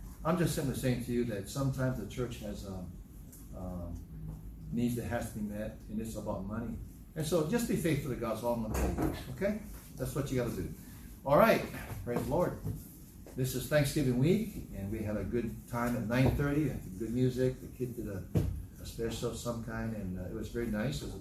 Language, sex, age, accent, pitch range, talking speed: English, male, 60-79, American, 95-130 Hz, 220 wpm